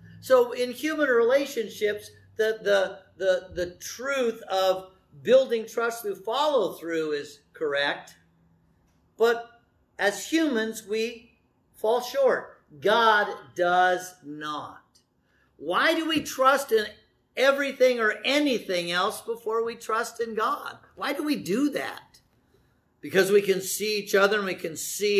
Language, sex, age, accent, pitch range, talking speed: English, male, 50-69, American, 165-240 Hz, 130 wpm